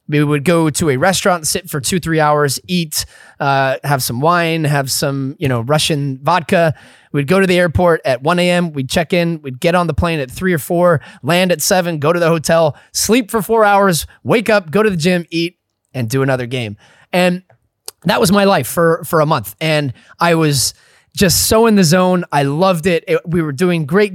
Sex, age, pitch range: male, 20-39, 145-185 Hz